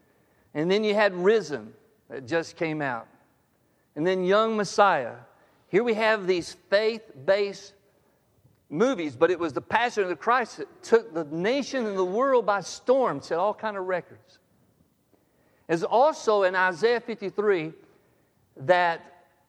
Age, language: 50-69, English